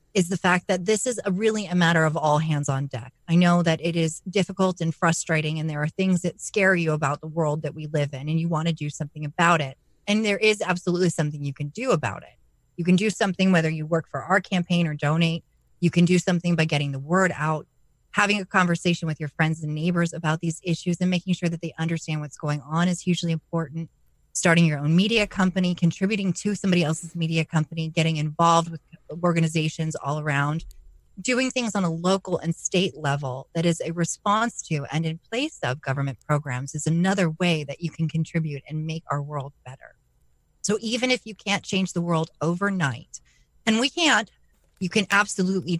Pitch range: 150-180 Hz